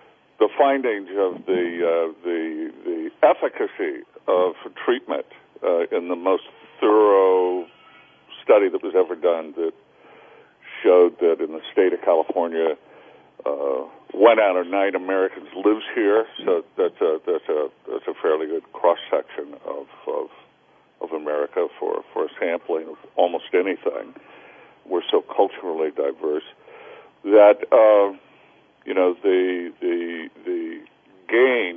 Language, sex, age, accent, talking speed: English, male, 60-79, American, 130 wpm